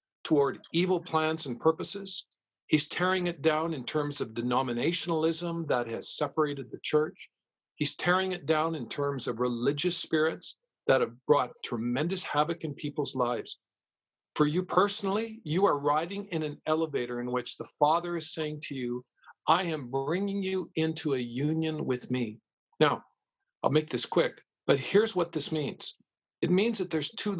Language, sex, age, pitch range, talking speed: English, male, 50-69, 145-185 Hz, 165 wpm